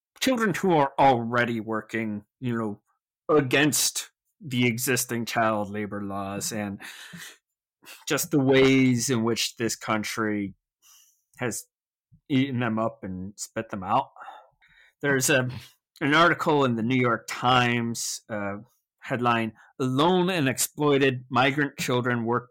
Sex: male